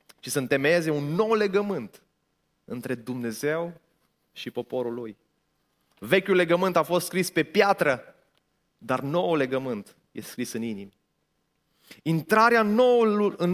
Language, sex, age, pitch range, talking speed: Romanian, male, 30-49, 130-180 Hz, 120 wpm